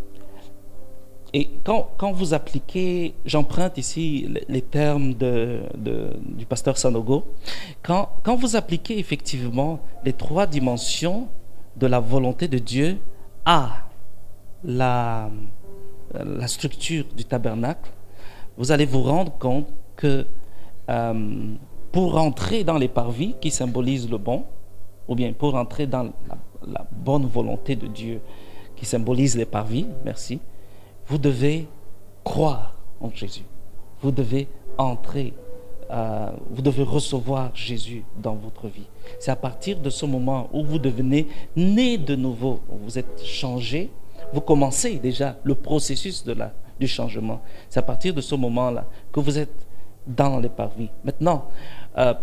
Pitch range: 110-145 Hz